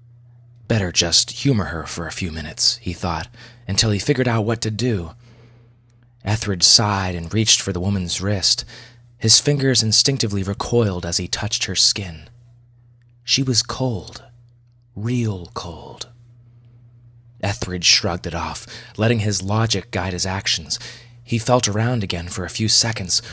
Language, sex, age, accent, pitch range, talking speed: English, male, 30-49, American, 100-120 Hz, 145 wpm